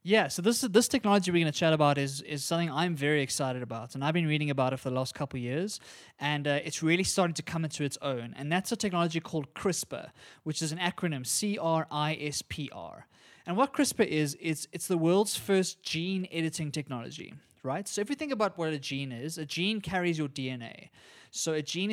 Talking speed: 220 wpm